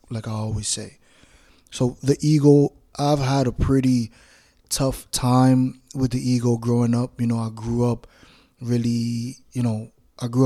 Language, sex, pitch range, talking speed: English, male, 115-130 Hz, 160 wpm